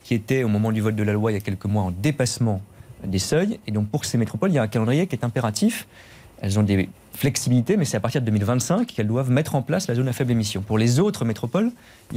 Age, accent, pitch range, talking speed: 40-59, French, 110-155 Hz, 275 wpm